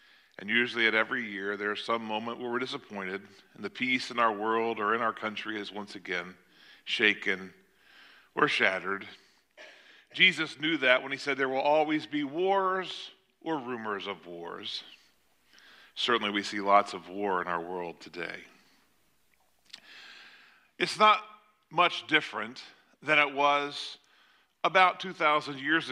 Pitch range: 120-185 Hz